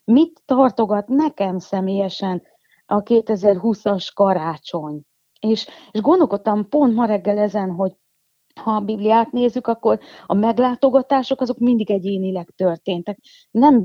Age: 30-49